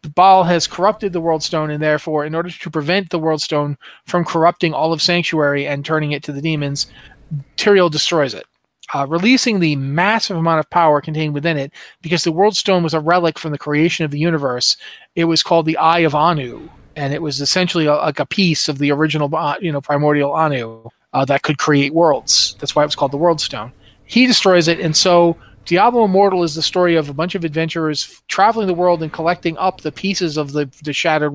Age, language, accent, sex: 40-59, English, American, male